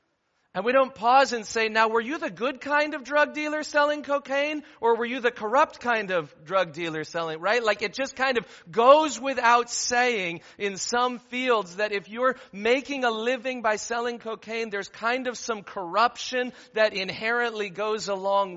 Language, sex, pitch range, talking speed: English, male, 150-230 Hz, 185 wpm